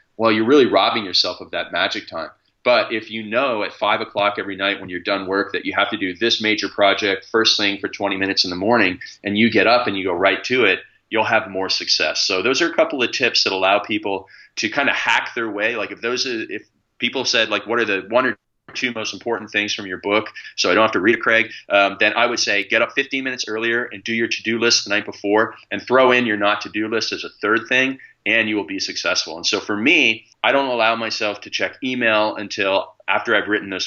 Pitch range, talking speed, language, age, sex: 100-115 Hz, 255 wpm, English, 30-49, male